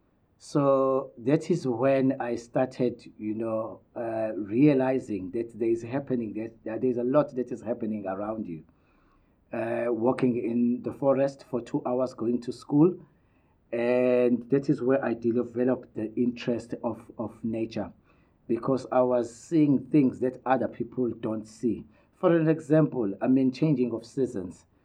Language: English